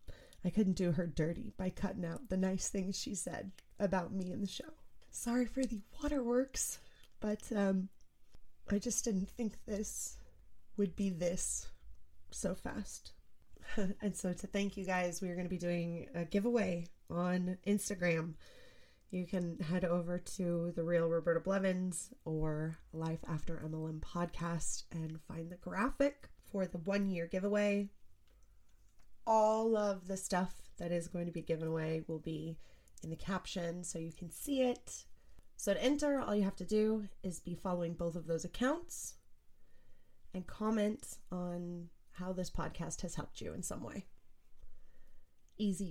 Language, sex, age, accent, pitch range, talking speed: English, female, 20-39, American, 170-205 Hz, 160 wpm